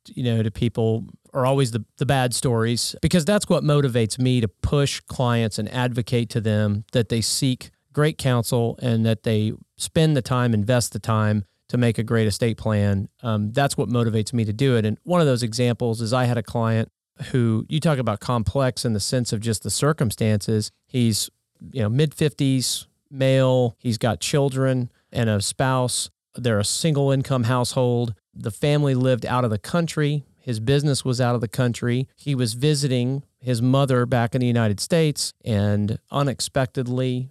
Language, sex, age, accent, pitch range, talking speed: English, male, 40-59, American, 115-140 Hz, 185 wpm